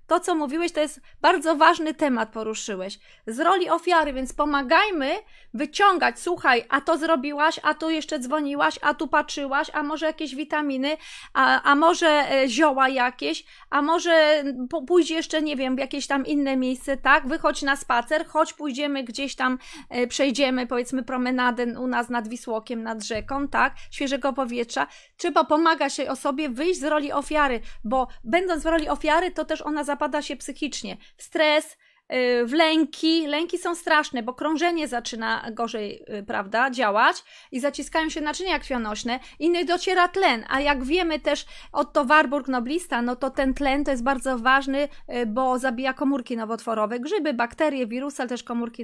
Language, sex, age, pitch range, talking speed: Polish, female, 20-39, 255-315 Hz, 165 wpm